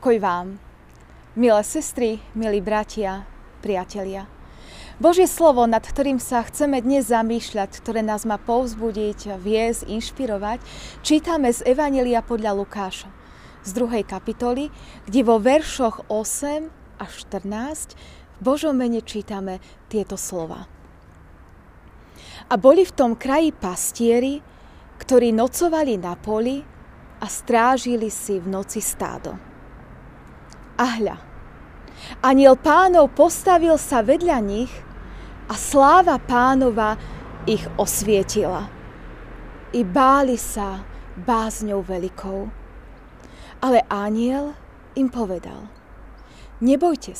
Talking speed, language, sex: 100 wpm, Slovak, female